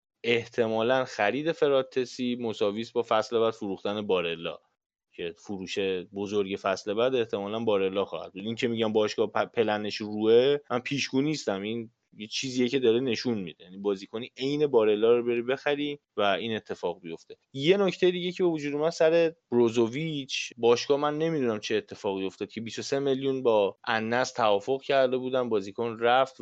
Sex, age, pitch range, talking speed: male, 20-39, 100-125 Hz, 155 wpm